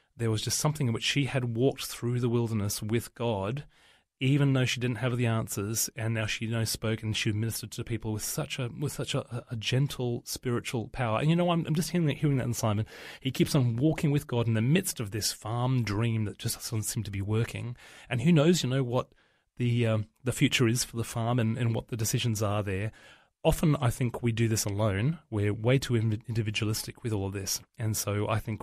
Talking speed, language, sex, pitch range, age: 245 wpm, English, male, 110-130 Hz, 30-49